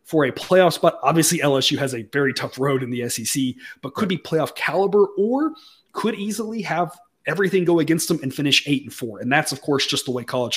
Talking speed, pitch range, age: 225 wpm, 130-170 Hz, 30-49